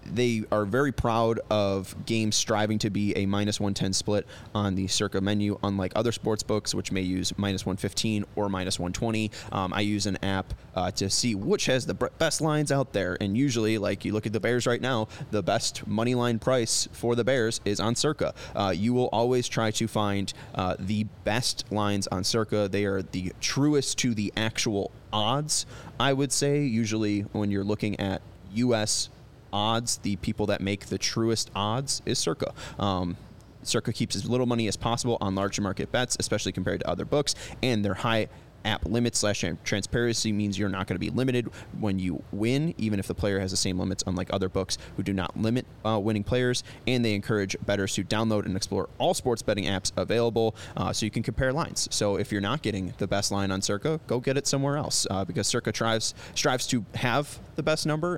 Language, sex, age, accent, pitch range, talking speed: English, male, 20-39, American, 100-120 Hz, 205 wpm